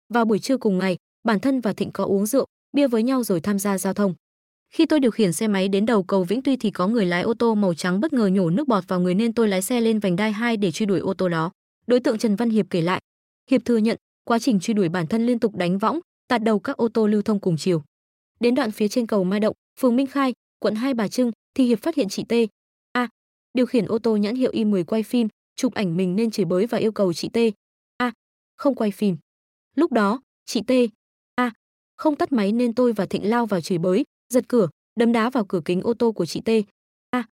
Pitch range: 195-240 Hz